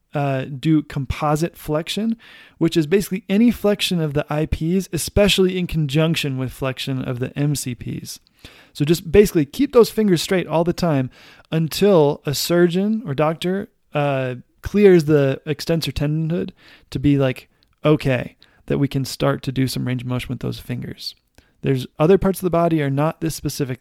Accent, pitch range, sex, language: American, 135-170 Hz, male, English